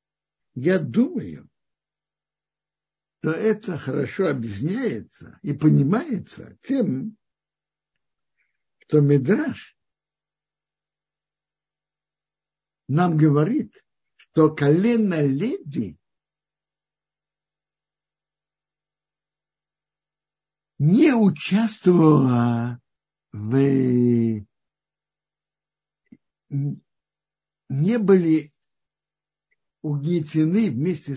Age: 60-79